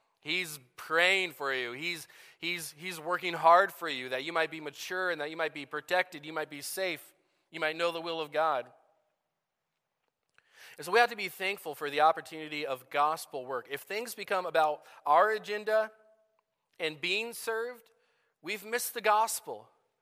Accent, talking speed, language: American, 175 wpm, English